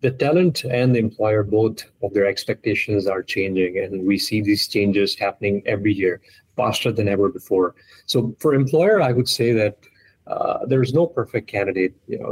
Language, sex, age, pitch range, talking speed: English, male, 30-49, 100-120 Hz, 180 wpm